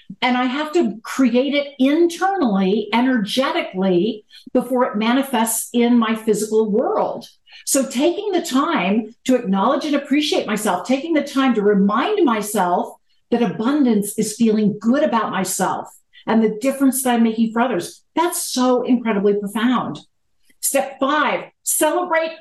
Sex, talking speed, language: female, 140 wpm, English